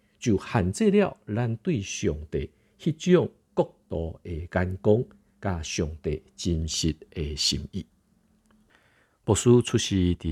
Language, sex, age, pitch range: Chinese, male, 50-69, 80-110 Hz